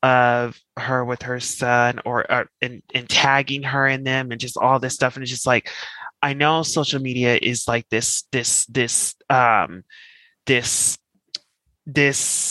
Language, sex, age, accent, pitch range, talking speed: English, male, 20-39, American, 120-140 Hz, 165 wpm